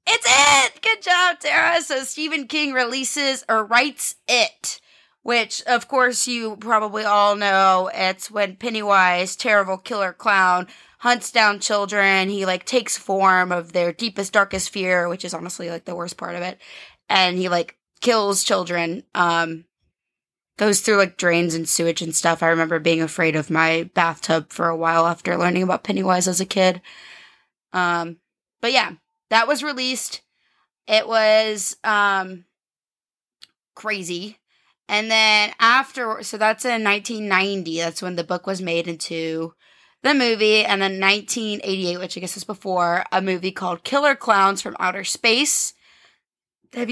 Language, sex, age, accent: English, female, 20-39, American